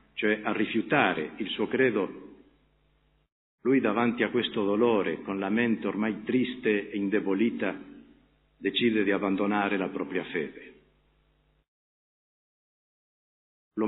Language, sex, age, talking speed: Italian, male, 50-69, 110 wpm